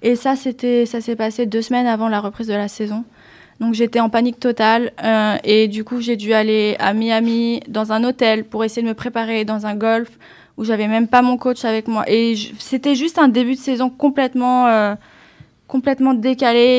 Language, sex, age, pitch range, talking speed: French, female, 20-39, 220-250 Hz, 205 wpm